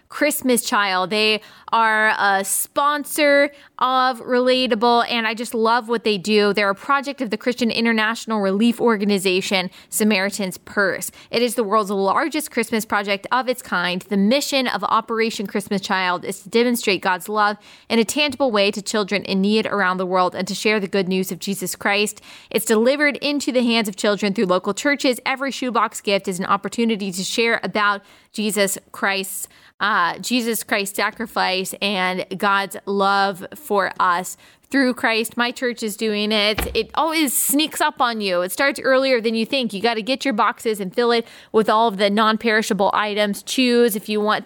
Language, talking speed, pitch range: English, 180 wpm, 200-240 Hz